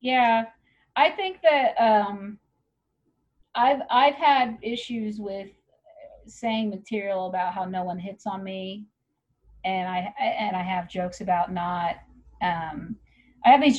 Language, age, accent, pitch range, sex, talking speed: English, 40-59, American, 175-230 Hz, female, 135 wpm